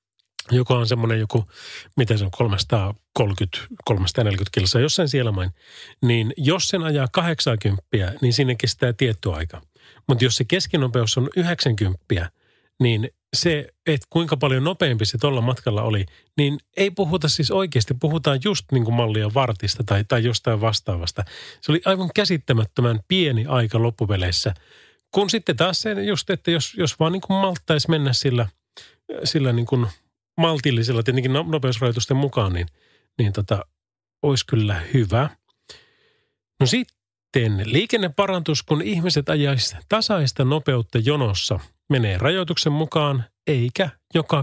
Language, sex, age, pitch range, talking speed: Finnish, male, 30-49, 110-155 Hz, 130 wpm